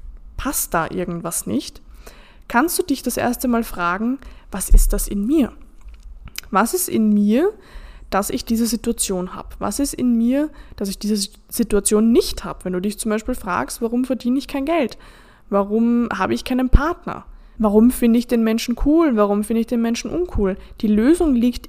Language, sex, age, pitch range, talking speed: German, female, 20-39, 205-255 Hz, 185 wpm